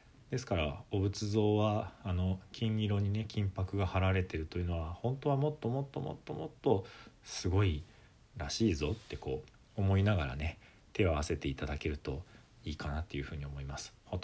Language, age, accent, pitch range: Japanese, 40-59, native, 80-105 Hz